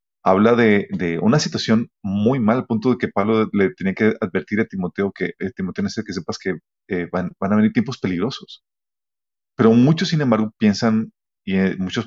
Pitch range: 90-110 Hz